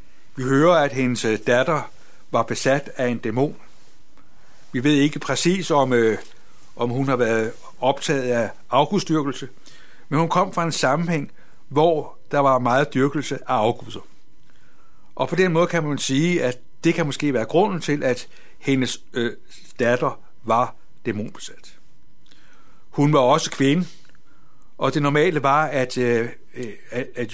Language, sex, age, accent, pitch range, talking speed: Danish, male, 60-79, native, 125-160 Hz, 140 wpm